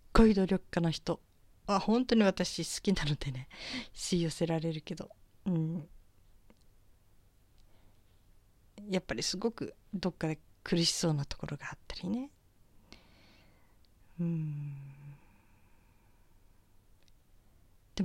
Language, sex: Japanese, female